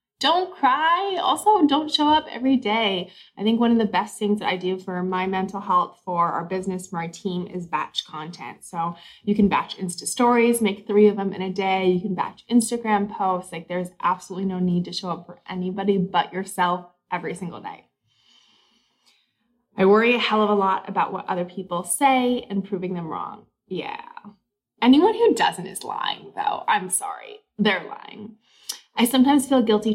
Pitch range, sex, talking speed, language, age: 180-225 Hz, female, 190 wpm, English, 20-39